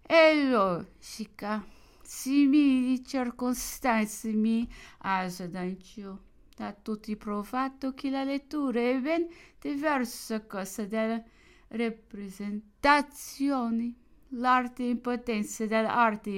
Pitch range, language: 210-280 Hz, English